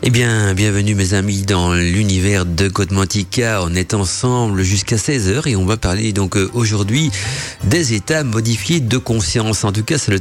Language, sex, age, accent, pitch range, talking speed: French, male, 50-69, French, 95-120 Hz, 175 wpm